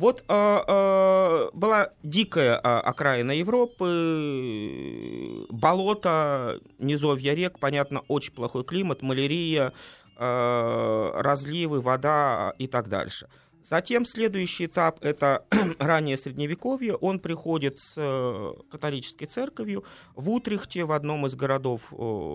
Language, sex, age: Russian, male, 20-39